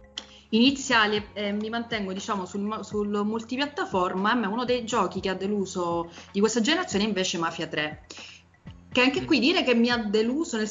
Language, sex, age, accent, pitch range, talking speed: Italian, female, 30-49, native, 180-230 Hz, 175 wpm